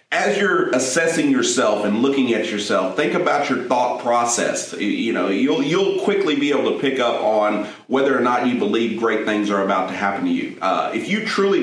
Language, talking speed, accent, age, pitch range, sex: English, 210 wpm, American, 40-59, 100-120 Hz, male